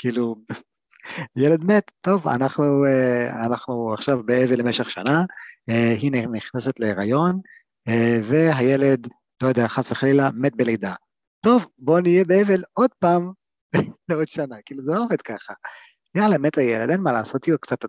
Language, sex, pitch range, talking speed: Hebrew, male, 110-155 Hz, 145 wpm